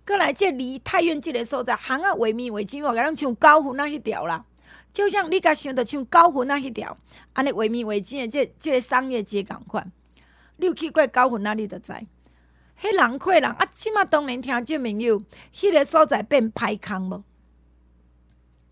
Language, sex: Chinese, female